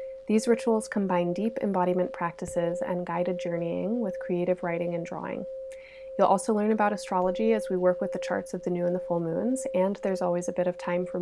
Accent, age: American, 20-39